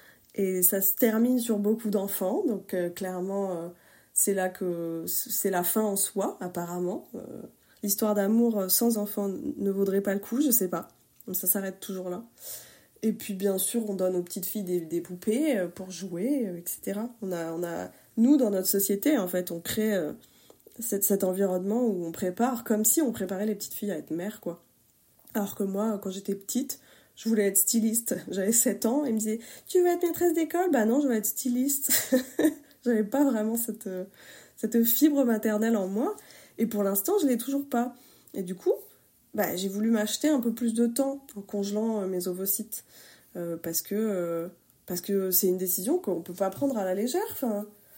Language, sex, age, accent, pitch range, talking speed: French, female, 20-39, French, 190-235 Hz, 205 wpm